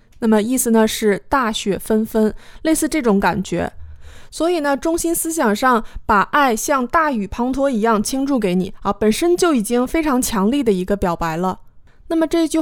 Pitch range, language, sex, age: 205-270 Hz, Chinese, female, 20-39